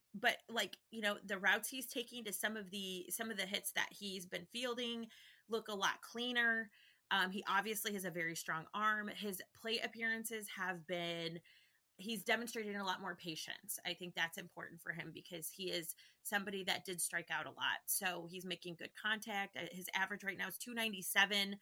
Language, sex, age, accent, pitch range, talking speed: English, female, 30-49, American, 175-215 Hz, 195 wpm